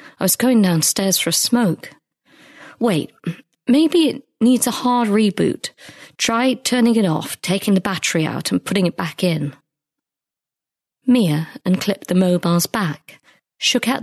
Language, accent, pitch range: English, British, 165-225 Hz